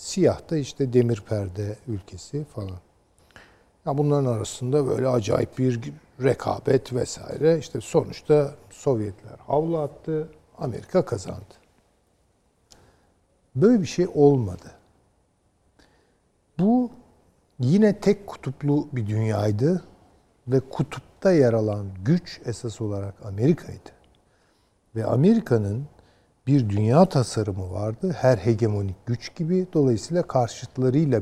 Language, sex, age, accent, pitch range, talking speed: Turkish, male, 60-79, native, 105-145 Hz, 100 wpm